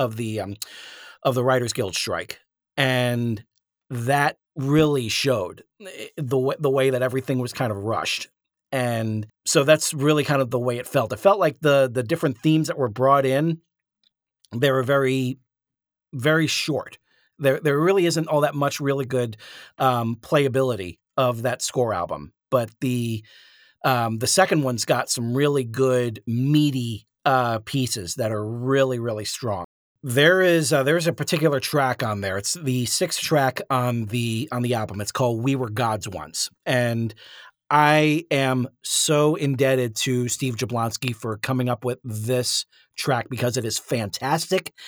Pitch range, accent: 120-145 Hz, American